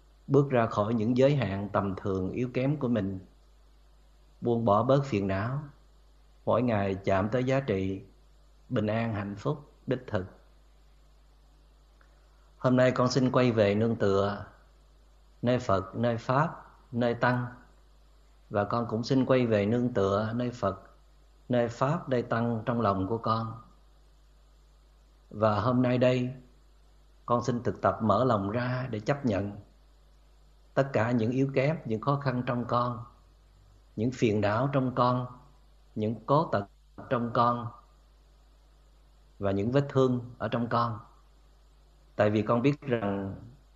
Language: Vietnamese